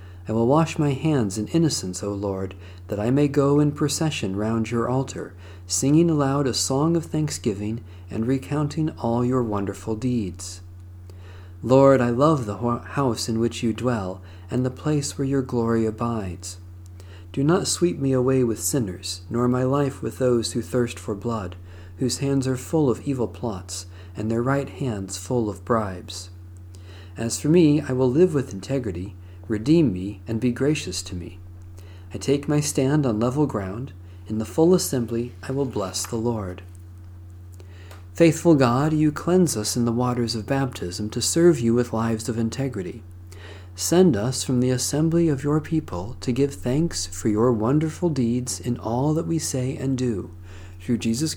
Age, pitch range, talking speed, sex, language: 50-69, 90-135 Hz, 175 wpm, male, English